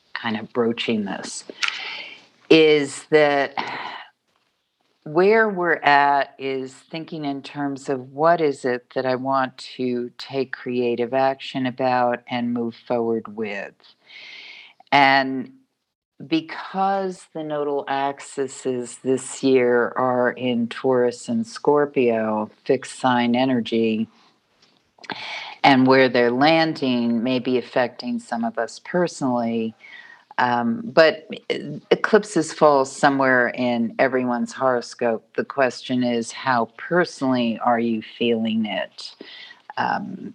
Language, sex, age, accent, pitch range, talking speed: English, female, 50-69, American, 120-140 Hz, 110 wpm